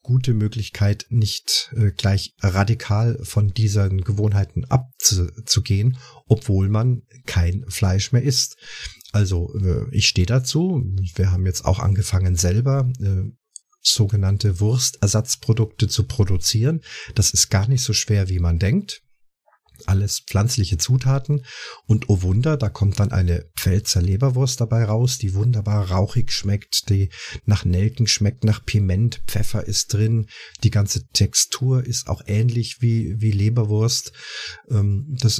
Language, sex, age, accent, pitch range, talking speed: German, male, 50-69, German, 100-120 Hz, 125 wpm